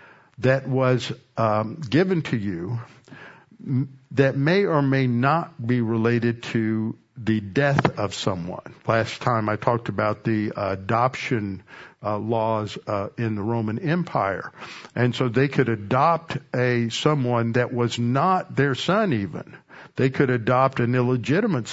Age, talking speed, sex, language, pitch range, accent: 60-79, 140 wpm, male, English, 115-135 Hz, American